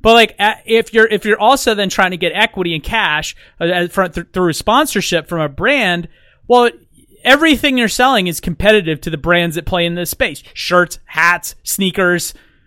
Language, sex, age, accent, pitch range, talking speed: English, male, 30-49, American, 170-225 Hz, 175 wpm